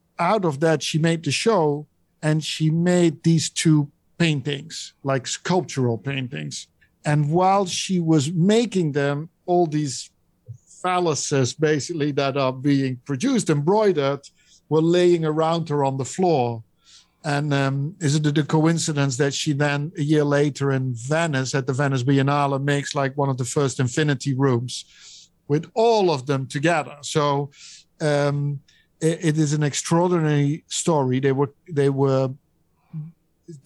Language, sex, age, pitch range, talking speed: English, male, 50-69, 140-160 Hz, 145 wpm